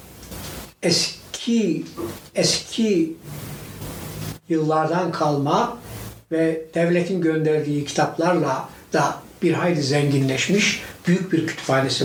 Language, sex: Turkish, male